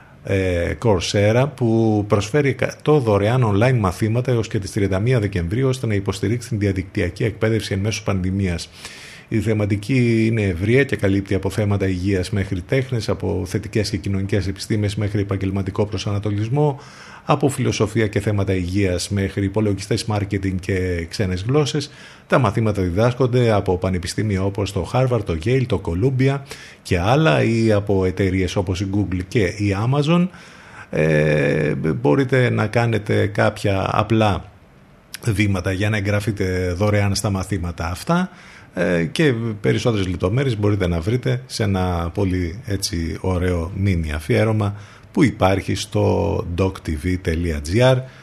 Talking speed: 130 wpm